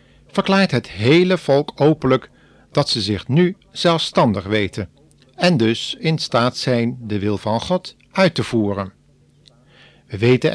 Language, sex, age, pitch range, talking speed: Dutch, male, 50-69, 115-150 Hz, 140 wpm